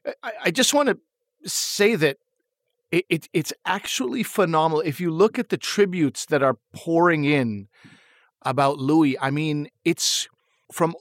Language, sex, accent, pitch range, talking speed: English, male, American, 140-175 Hz, 145 wpm